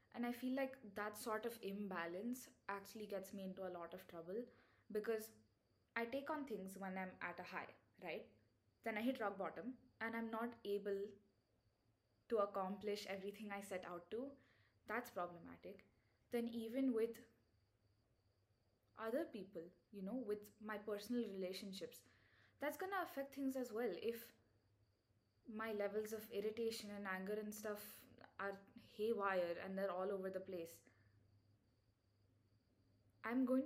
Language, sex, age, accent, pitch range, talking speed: English, female, 20-39, Indian, 170-225 Hz, 145 wpm